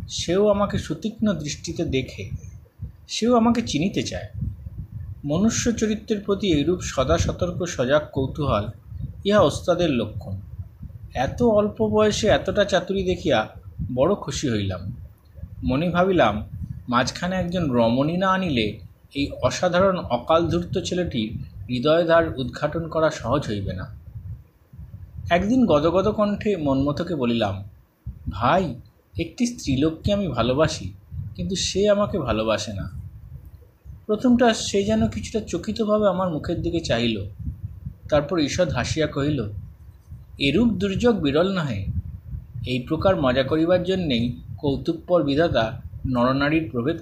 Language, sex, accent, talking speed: Bengali, male, native, 105 wpm